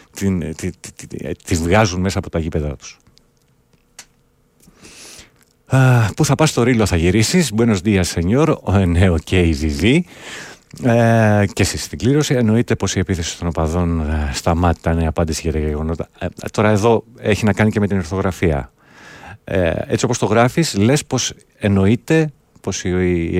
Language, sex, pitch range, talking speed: Greek, male, 85-115 Hz, 160 wpm